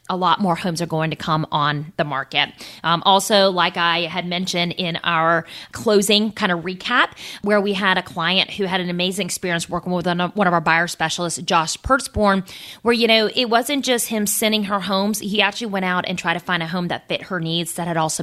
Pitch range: 170-205 Hz